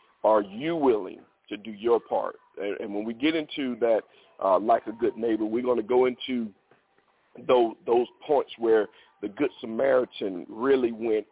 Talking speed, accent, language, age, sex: 170 wpm, American, English, 50-69, male